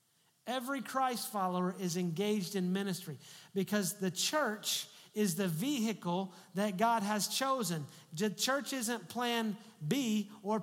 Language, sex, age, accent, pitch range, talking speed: English, male, 40-59, American, 190-250 Hz, 130 wpm